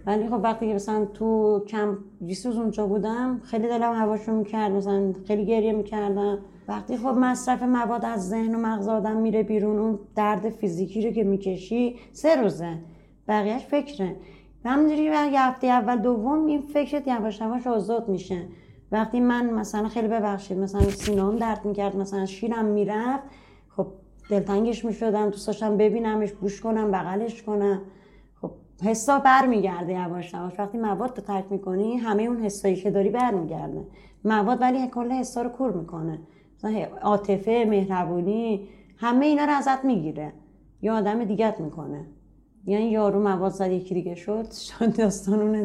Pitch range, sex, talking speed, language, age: 200-245 Hz, female, 150 wpm, Persian, 30-49